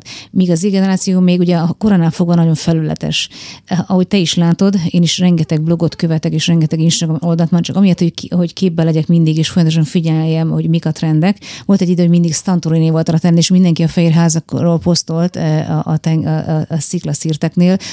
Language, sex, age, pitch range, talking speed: Hungarian, female, 30-49, 160-175 Hz, 190 wpm